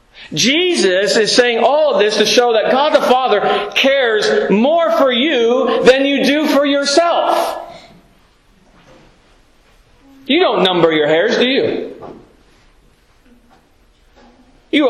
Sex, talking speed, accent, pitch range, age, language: male, 115 wpm, American, 165-280 Hz, 40-59, English